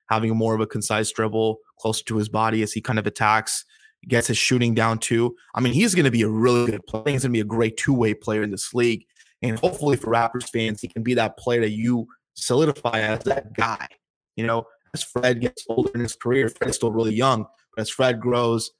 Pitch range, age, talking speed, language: 110-130 Hz, 20-39, 235 wpm, English